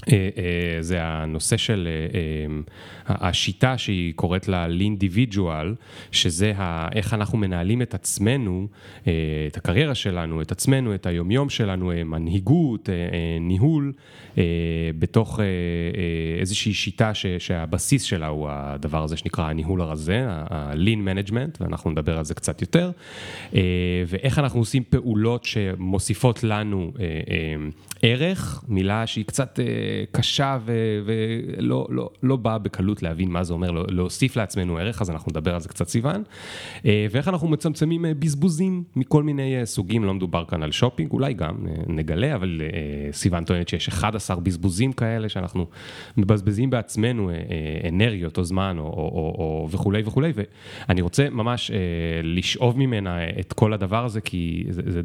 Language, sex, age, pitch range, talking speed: Hebrew, male, 30-49, 85-115 Hz, 125 wpm